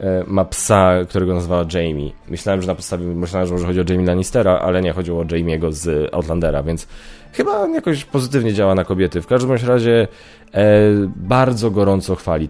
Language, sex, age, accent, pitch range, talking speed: Polish, male, 20-39, native, 90-110 Hz, 180 wpm